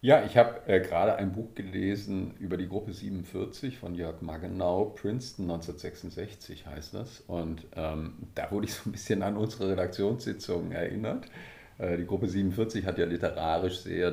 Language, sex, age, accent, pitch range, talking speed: German, male, 50-69, German, 85-100 Hz, 165 wpm